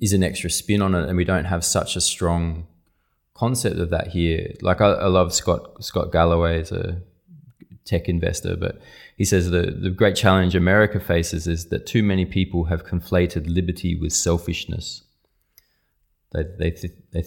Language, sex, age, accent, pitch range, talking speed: English, male, 20-39, Australian, 85-95 Hz, 175 wpm